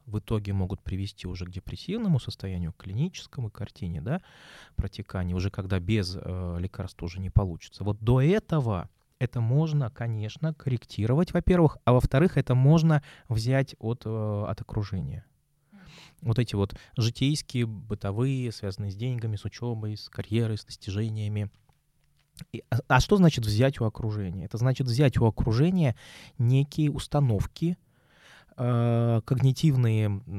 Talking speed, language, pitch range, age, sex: 130 wpm, Russian, 100-135 Hz, 20-39, male